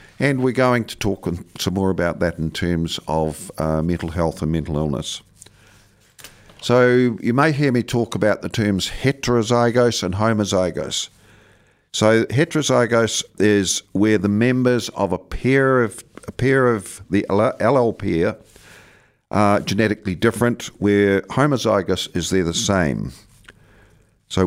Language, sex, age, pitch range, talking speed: English, male, 50-69, 95-115 Hz, 135 wpm